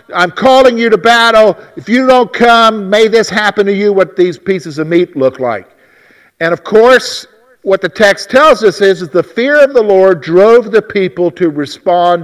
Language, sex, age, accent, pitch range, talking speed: English, male, 50-69, American, 165-220 Hz, 200 wpm